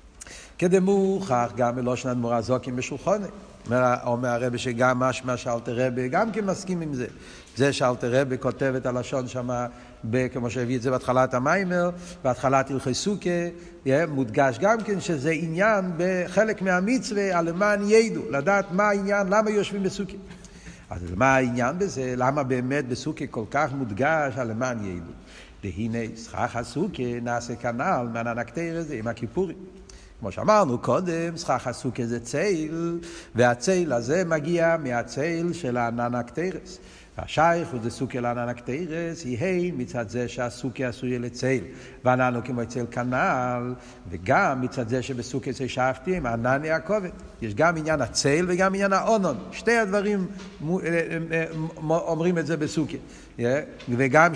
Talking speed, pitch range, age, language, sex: 135 wpm, 125-175 Hz, 60-79, Hebrew, male